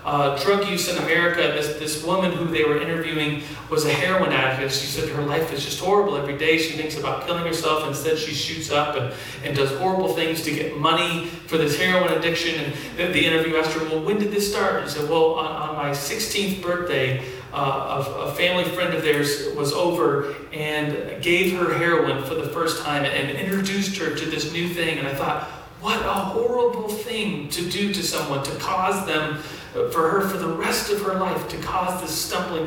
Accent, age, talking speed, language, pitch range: American, 40-59, 215 wpm, English, 145-180 Hz